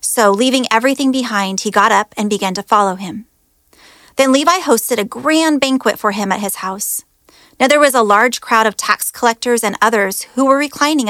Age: 30-49